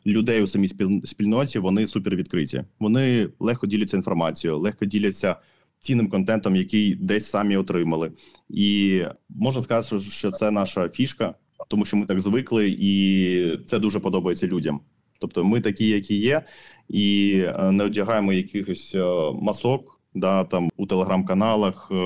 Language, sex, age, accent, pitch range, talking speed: Ukrainian, male, 20-39, native, 95-105 Hz, 135 wpm